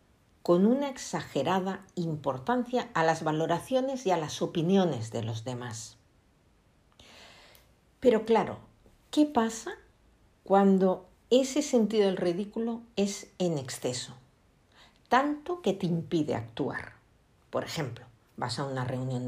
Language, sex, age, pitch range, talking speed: Spanish, female, 50-69, 125-185 Hz, 115 wpm